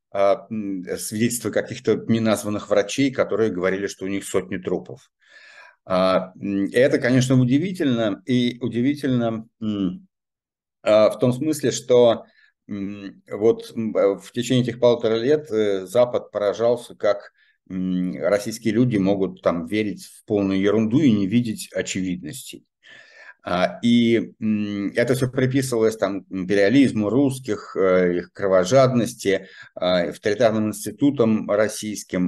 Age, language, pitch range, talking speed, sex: 50-69, Russian, 100-125 Hz, 100 wpm, male